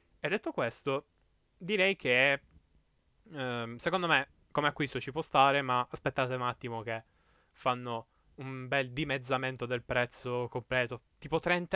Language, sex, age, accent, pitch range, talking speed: Italian, male, 10-29, native, 125-170 Hz, 140 wpm